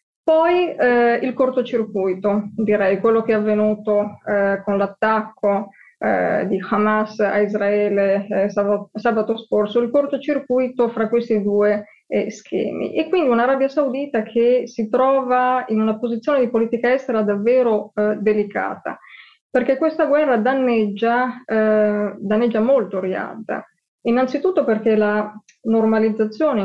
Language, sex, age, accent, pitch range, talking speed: Italian, female, 20-39, native, 205-240 Hz, 120 wpm